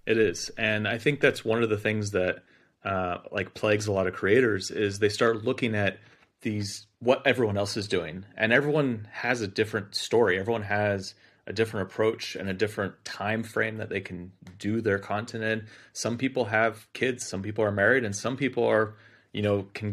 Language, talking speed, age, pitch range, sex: English, 200 wpm, 30-49, 100-115 Hz, male